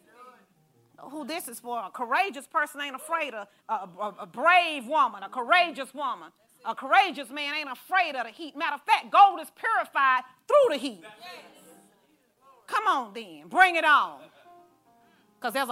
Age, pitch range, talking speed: 40-59, 275-380 Hz, 165 wpm